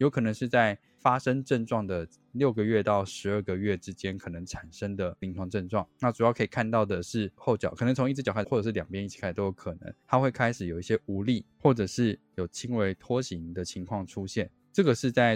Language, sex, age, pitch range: Chinese, male, 20-39, 90-120 Hz